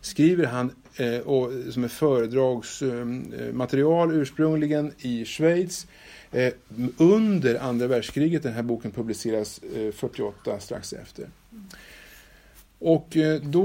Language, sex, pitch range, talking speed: Swedish, male, 105-135 Hz, 90 wpm